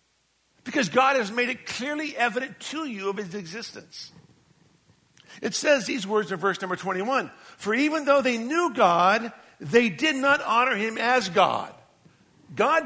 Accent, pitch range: American, 180-260 Hz